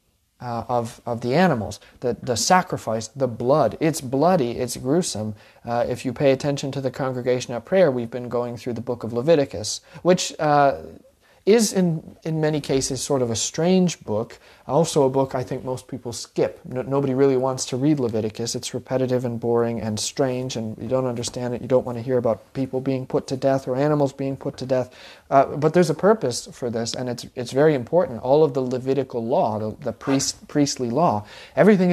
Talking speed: 205 wpm